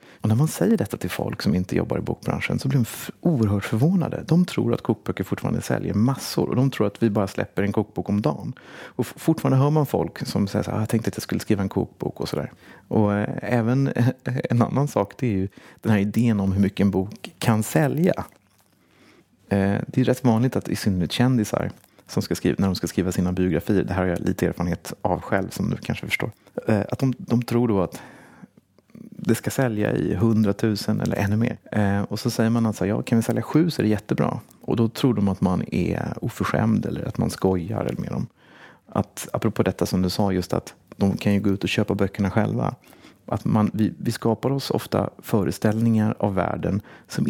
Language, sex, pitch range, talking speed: Swedish, male, 100-120 Hz, 230 wpm